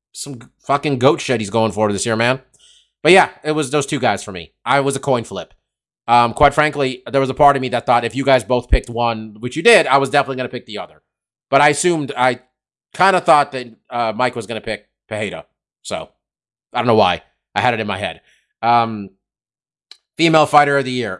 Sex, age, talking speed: male, 30-49, 240 wpm